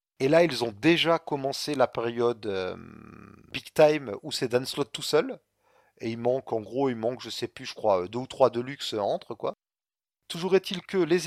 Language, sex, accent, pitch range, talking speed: French, male, French, 125-155 Hz, 210 wpm